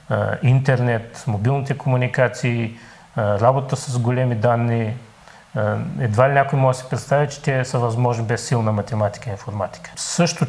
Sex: male